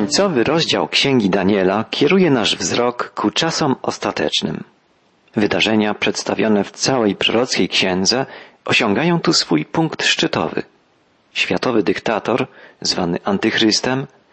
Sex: male